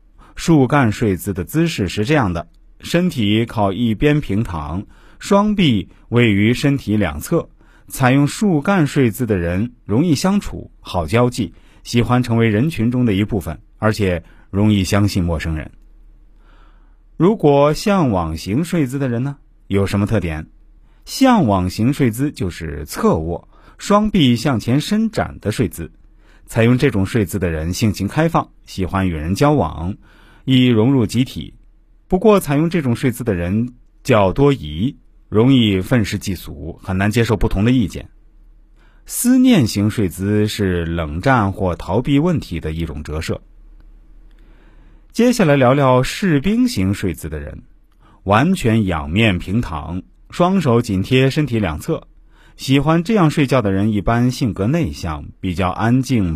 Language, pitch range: Chinese, 95-140 Hz